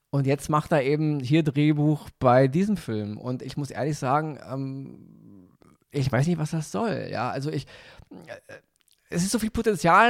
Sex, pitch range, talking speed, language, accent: male, 125-170 Hz, 180 wpm, German, German